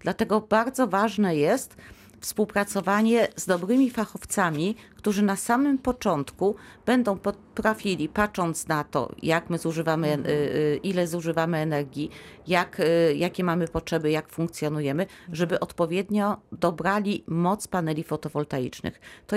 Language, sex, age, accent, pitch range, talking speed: Polish, female, 40-59, native, 155-195 Hz, 110 wpm